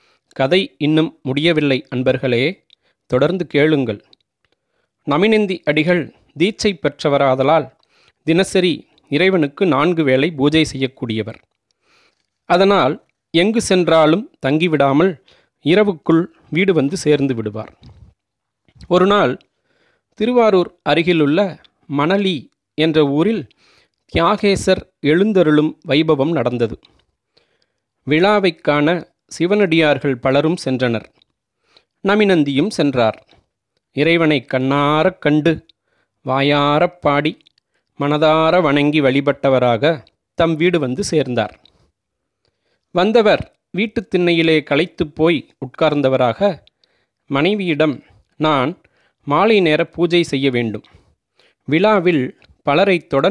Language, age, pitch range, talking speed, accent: Tamil, 30-49, 135-180 Hz, 80 wpm, native